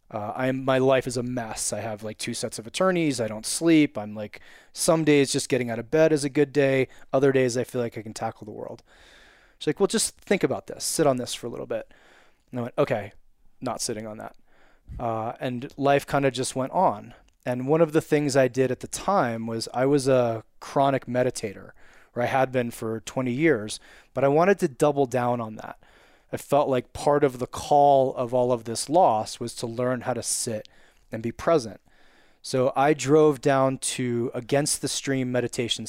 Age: 20-39